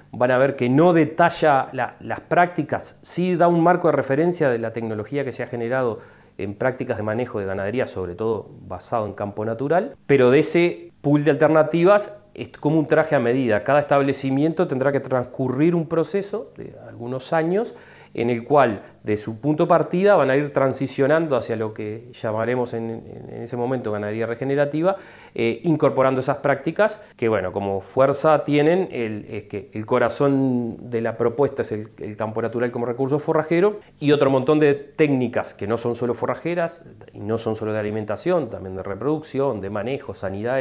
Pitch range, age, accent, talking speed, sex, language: 115-150 Hz, 30-49, Argentinian, 180 wpm, male, Spanish